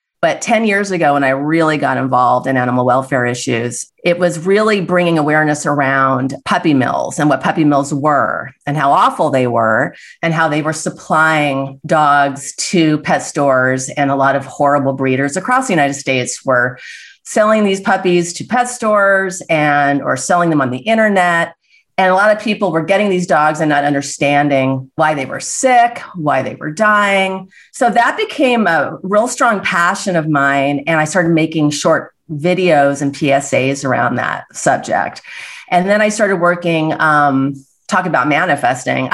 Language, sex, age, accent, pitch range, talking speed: English, female, 40-59, American, 140-185 Hz, 175 wpm